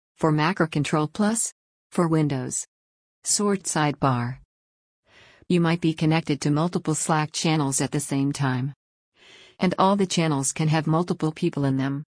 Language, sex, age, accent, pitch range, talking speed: English, female, 50-69, American, 140-165 Hz, 150 wpm